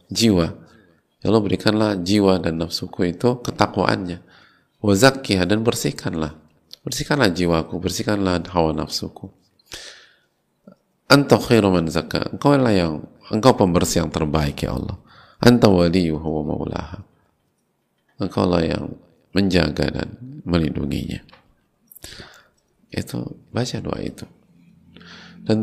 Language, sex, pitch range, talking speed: Indonesian, male, 85-115 Hz, 90 wpm